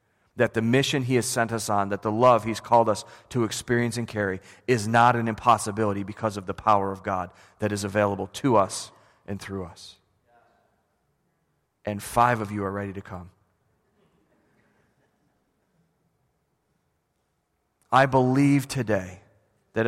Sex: male